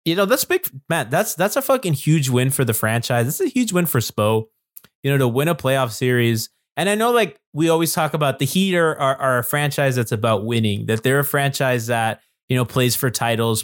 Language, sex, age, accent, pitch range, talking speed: English, male, 20-39, American, 120-155 Hz, 240 wpm